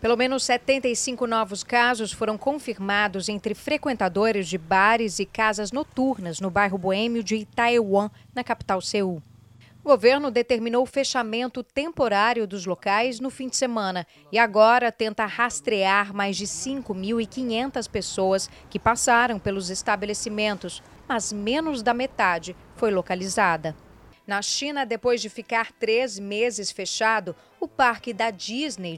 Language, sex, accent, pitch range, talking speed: Portuguese, female, Brazilian, 200-245 Hz, 135 wpm